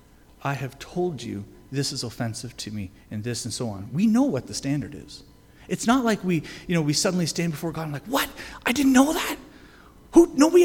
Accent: American